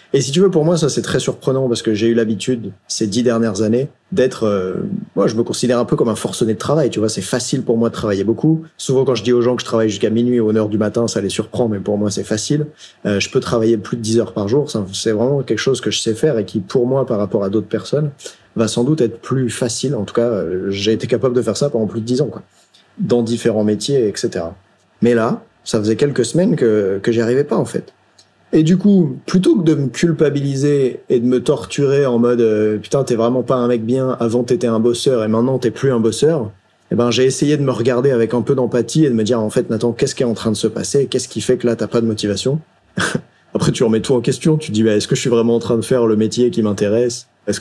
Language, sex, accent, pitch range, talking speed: French, male, French, 110-130 Hz, 285 wpm